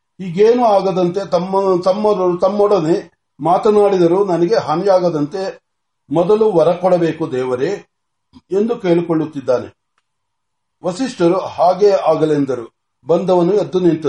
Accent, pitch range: native, 160-190 Hz